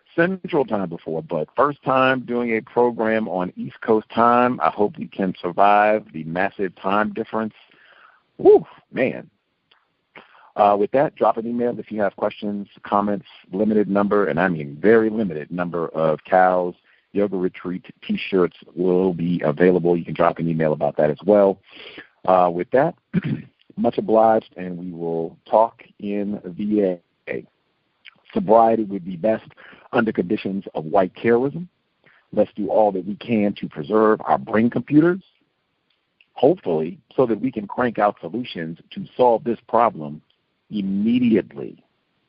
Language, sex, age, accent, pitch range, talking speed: English, male, 50-69, American, 90-115 Hz, 150 wpm